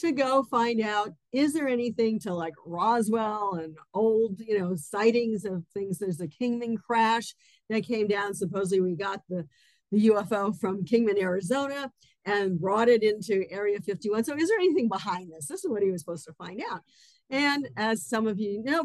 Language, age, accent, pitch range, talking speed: English, 50-69, American, 185-240 Hz, 190 wpm